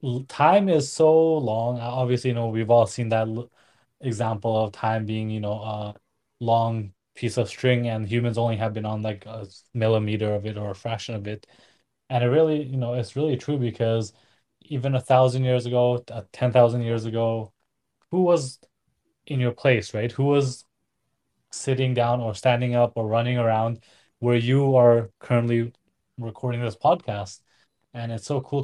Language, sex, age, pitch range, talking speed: English, male, 20-39, 110-125 Hz, 170 wpm